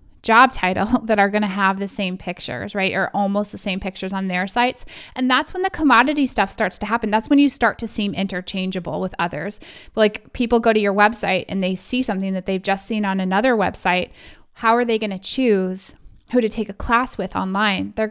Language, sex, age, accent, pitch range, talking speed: English, female, 20-39, American, 190-225 Hz, 220 wpm